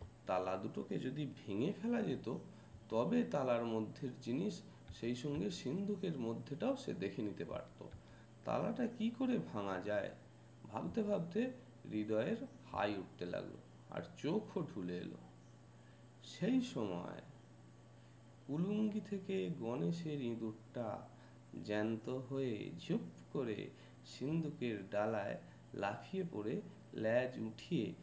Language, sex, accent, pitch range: Bengali, male, native, 110-145 Hz